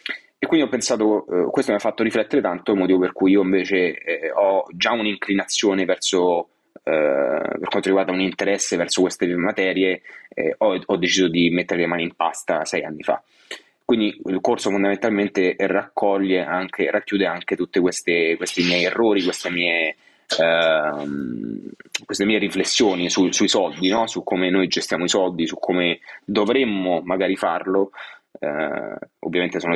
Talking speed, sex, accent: 160 wpm, male, native